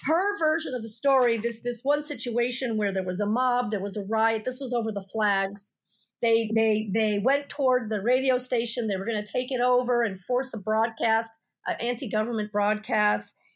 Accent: American